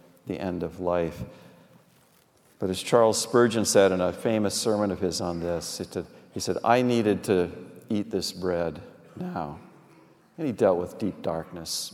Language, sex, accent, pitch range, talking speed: English, male, American, 90-125 Hz, 160 wpm